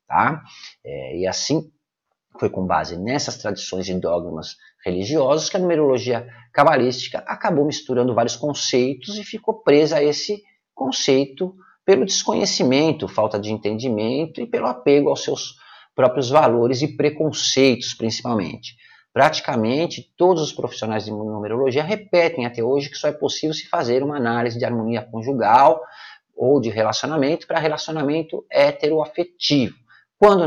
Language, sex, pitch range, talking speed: Portuguese, male, 115-155 Hz, 135 wpm